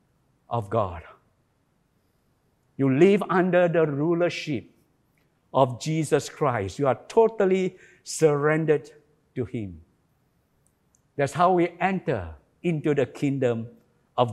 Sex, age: male, 60-79